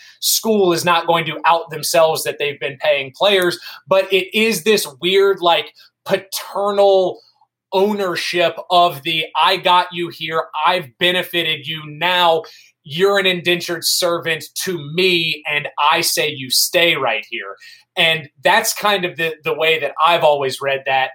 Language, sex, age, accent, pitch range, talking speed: English, male, 20-39, American, 160-190 Hz, 155 wpm